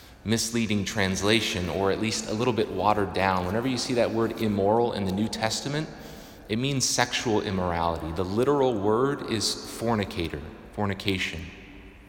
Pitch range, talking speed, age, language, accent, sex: 95-120 Hz, 150 wpm, 30-49, English, American, male